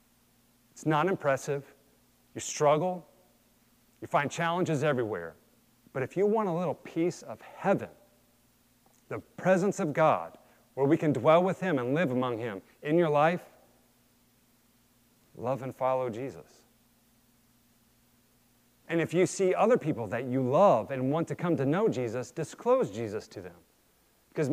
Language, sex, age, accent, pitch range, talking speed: English, male, 40-59, American, 120-150 Hz, 145 wpm